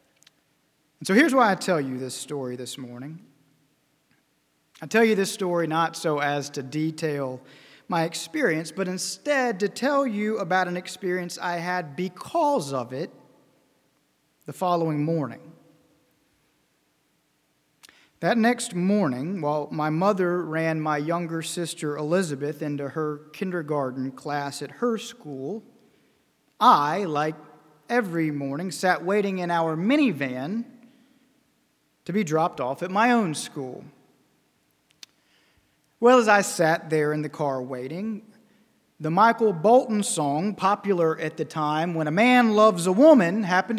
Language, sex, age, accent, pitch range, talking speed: English, male, 40-59, American, 150-220 Hz, 135 wpm